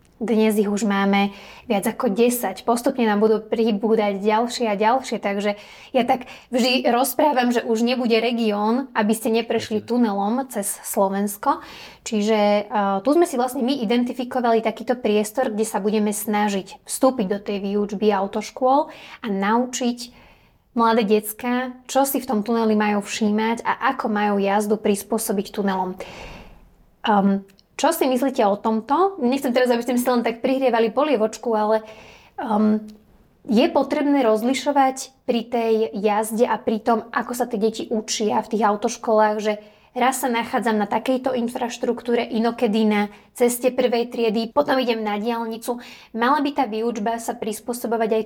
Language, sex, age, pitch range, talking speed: Slovak, female, 20-39, 215-250 Hz, 150 wpm